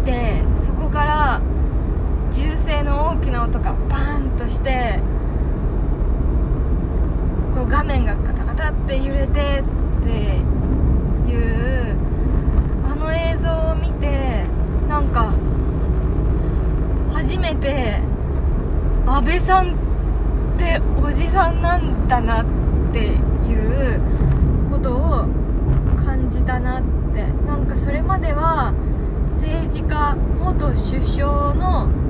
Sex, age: female, 20-39